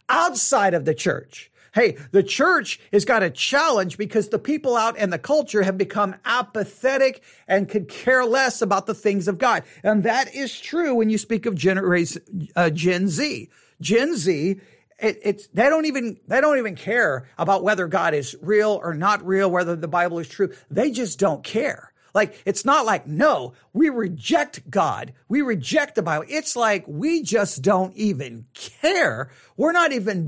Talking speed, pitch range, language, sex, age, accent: 180 wpm, 180-265 Hz, English, male, 50-69, American